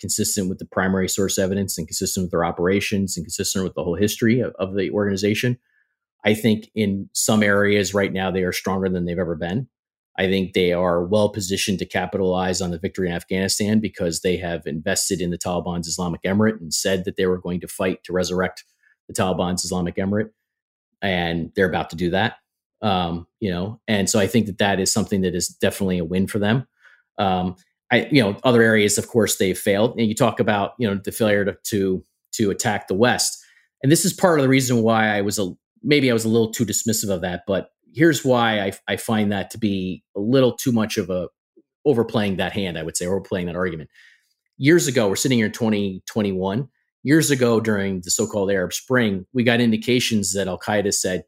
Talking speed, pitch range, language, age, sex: 215 wpm, 90-110 Hz, English, 30-49, male